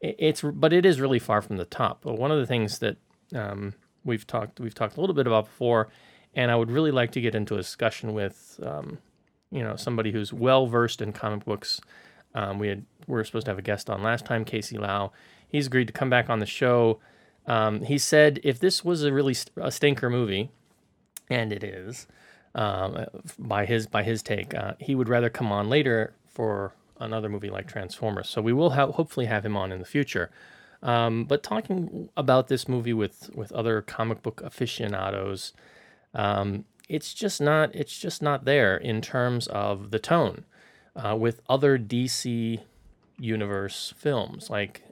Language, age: English, 30-49